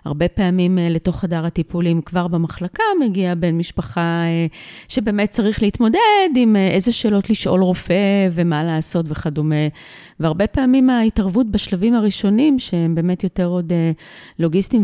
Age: 40-59